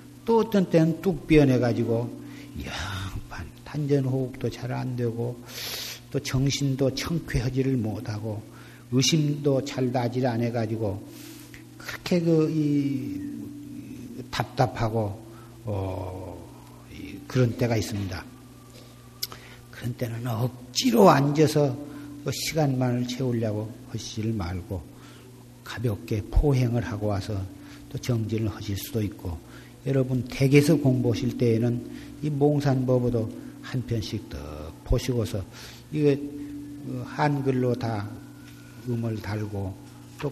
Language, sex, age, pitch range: Korean, male, 50-69, 110-135 Hz